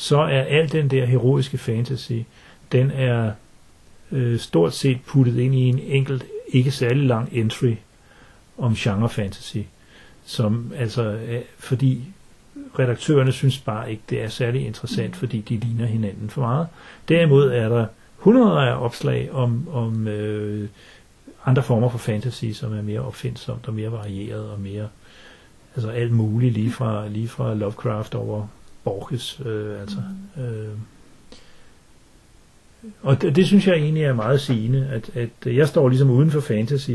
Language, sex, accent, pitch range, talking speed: Danish, male, native, 110-130 Hz, 155 wpm